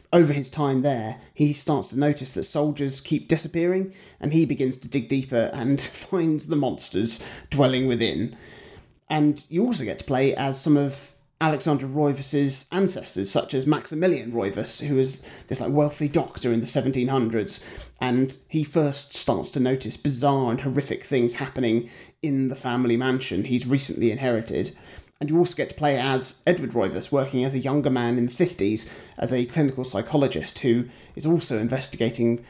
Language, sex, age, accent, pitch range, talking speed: English, male, 30-49, British, 130-150 Hz, 170 wpm